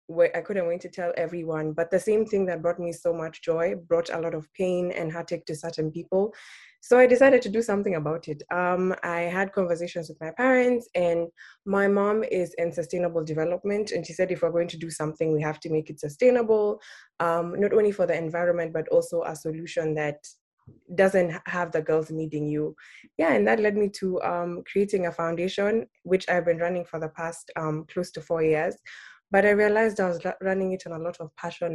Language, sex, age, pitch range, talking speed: English, female, 20-39, 160-185 Hz, 215 wpm